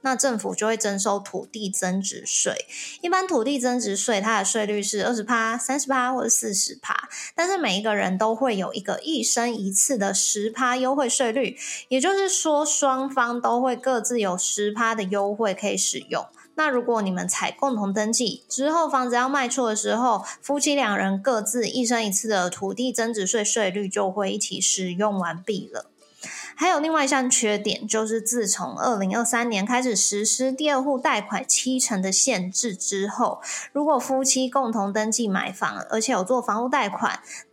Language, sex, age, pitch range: Chinese, female, 20-39, 205-265 Hz